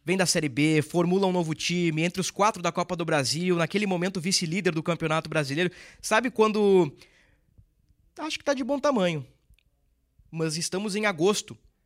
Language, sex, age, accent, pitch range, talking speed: Portuguese, male, 20-39, Brazilian, 150-200 Hz, 165 wpm